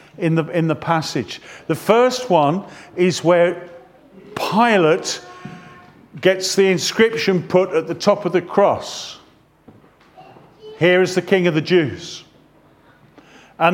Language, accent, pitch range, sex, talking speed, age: English, British, 165-225 Hz, male, 125 wpm, 50-69